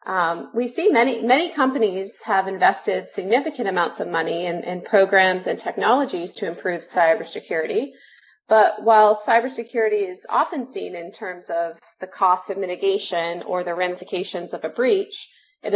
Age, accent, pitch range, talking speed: 30-49, American, 185-235 Hz, 150 wpm